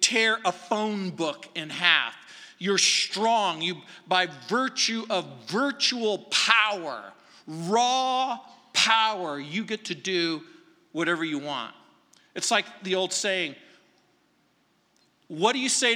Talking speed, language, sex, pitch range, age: 115 wpm, English, male, 165-220 Hz, 50-69